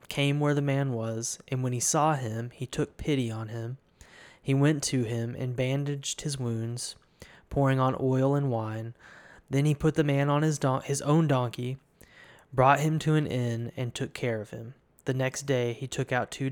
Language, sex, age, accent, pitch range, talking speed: English, male, 20-39, American, 115-135 Hz, 200 wpm